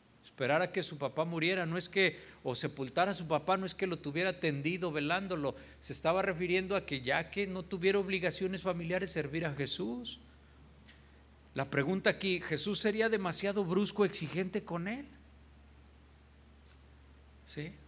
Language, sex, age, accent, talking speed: Spanish, male, 50-69, Mexican, 155 wpm